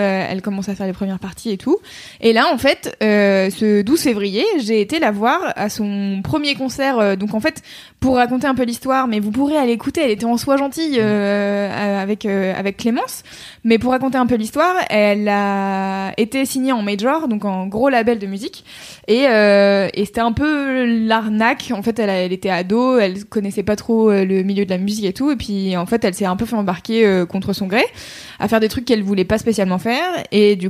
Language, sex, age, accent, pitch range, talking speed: French, female, 20-39, French, 200-245 Hz, 230 wpm